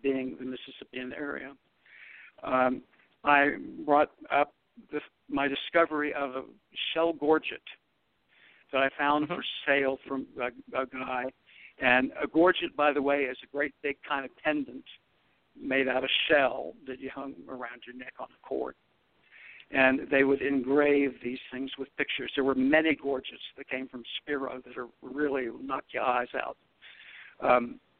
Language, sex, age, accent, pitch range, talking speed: English, male, 60-79, American, 130-145 Hz, 160 wpm